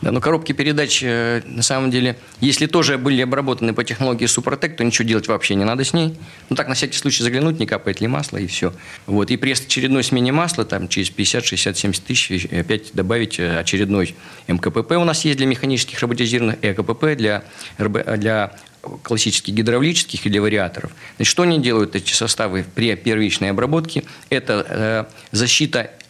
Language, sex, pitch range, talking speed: Russian, male, 105-130 Hz, 170 wpm